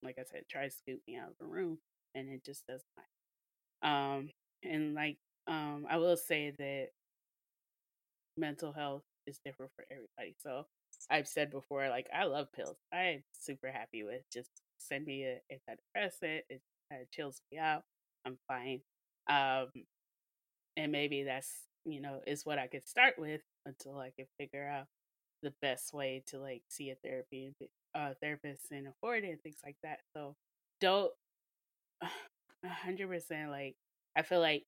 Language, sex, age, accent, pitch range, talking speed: English, female, 20-39, American, 135-160 Hz, 170 wpm